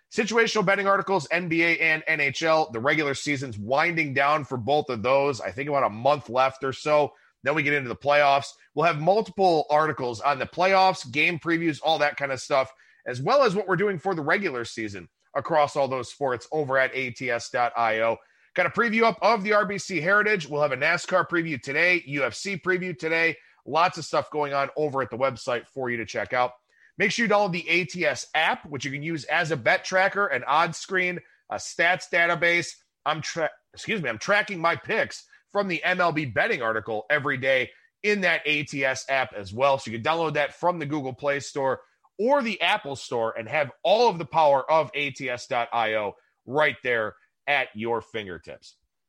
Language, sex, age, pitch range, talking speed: English, male, 30-49, 135-180 Hz, 190 wpm